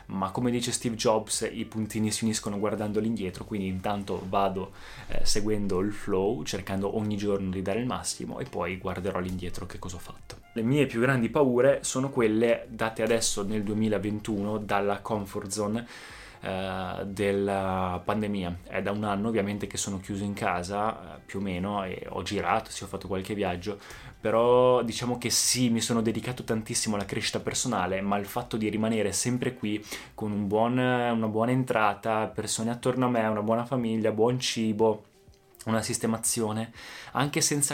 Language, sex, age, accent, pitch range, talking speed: Italian, male, 20-39, native, 100-120 Hz, 170 wpm